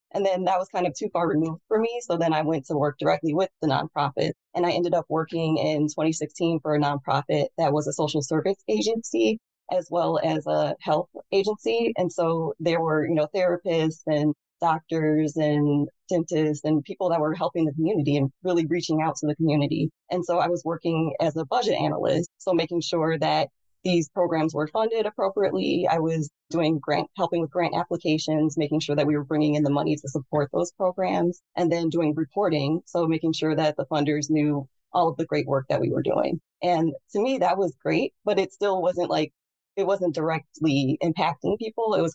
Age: 20-39